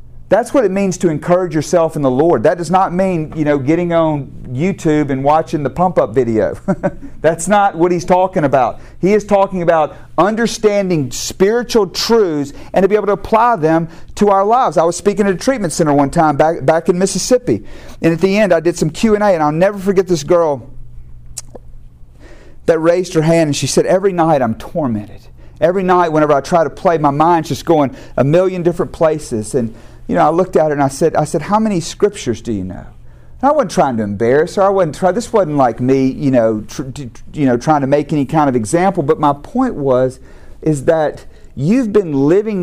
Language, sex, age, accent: English, male, 40-59, American